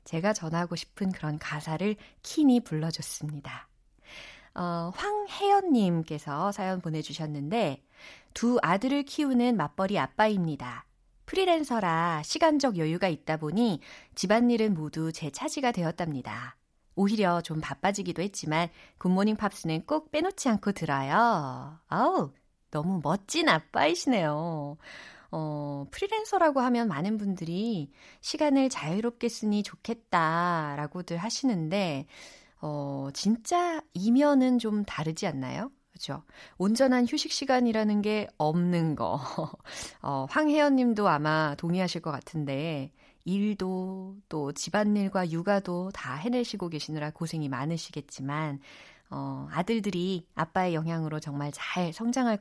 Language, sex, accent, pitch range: Korean, female, native, 155-230 Hz